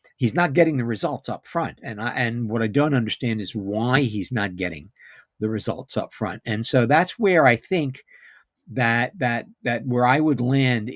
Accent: American